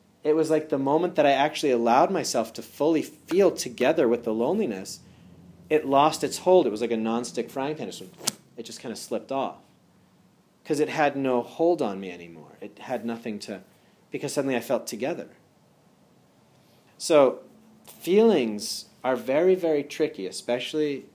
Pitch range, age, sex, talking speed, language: 110-145 Hz, 40-59, male, 165 wpm, English